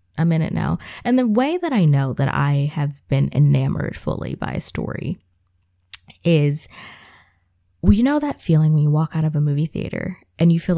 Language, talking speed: English, 195 wpm